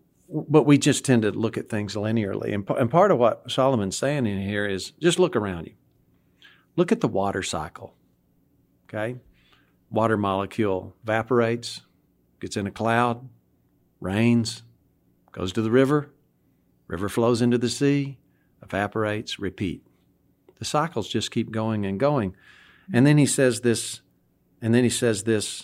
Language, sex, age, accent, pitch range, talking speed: English, male, 50-69, American, 100-130 Hz, 150 wpm